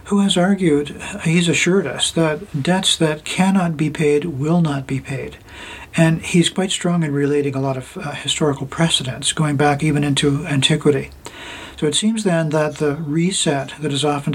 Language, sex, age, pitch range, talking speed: English, male, 50-69, 140-170 Hz, 180 wpm